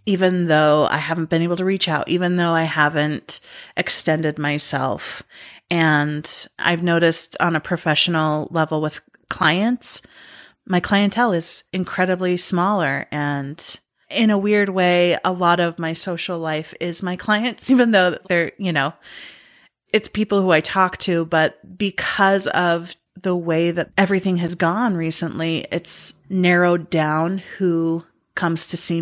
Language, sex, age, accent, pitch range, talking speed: English, female, 30-49, American, 160-185 Hz, 145 wpm